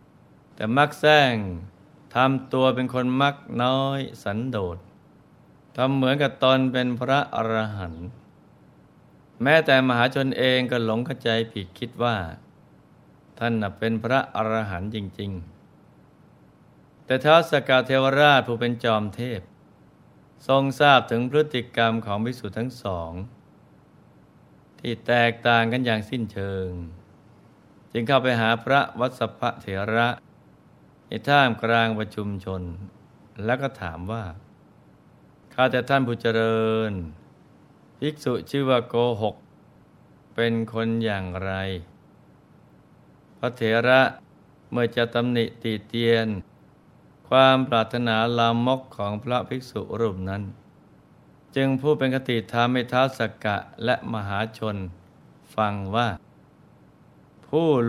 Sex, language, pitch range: male, Thai, 110-130 Hz